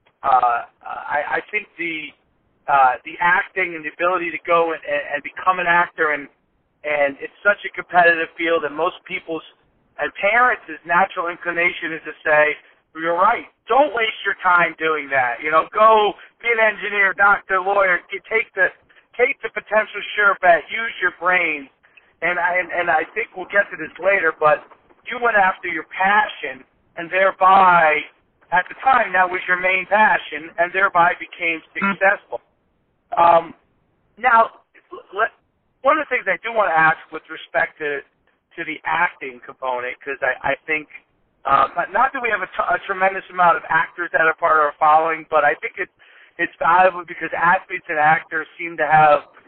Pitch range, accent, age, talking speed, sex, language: 155-200 Hz, American, 50-69, 175 wpm, male, English